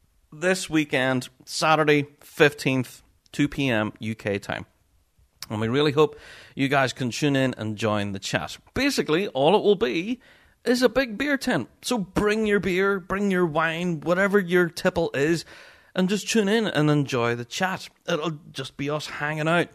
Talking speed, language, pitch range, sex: 165 wpm, English, 125-180 Hz, male